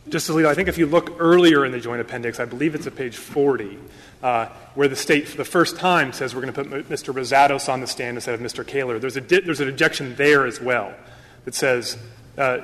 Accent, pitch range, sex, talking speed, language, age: American, 130-170 Hz, male, 250 wpm, English, 30-49